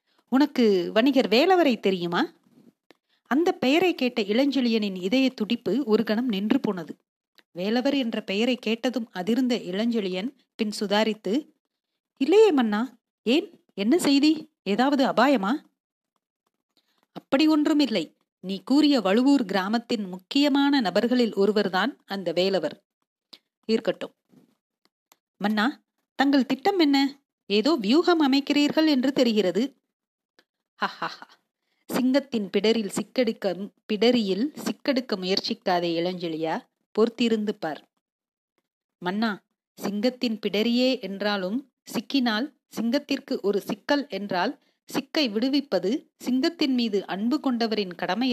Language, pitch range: Tamil, 205-275 Hz